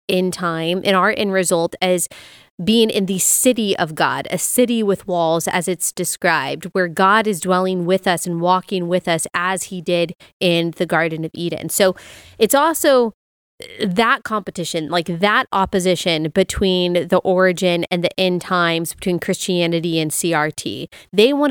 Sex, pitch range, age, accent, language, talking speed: female, 175-215 Hz, 20-39, American, English, 165 wpm